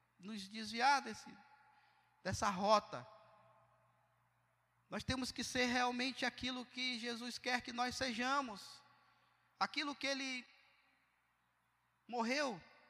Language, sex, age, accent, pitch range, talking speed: Portuguese, male, 20-39, Brazilian, 215-280 Hz, 95 wpm